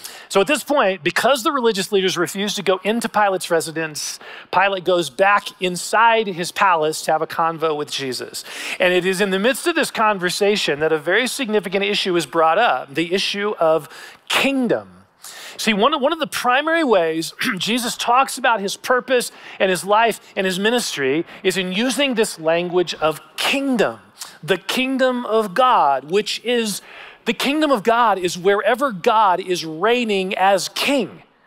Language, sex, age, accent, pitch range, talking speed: English, male, 40-59, American, 185-255 Hz, 170 wpm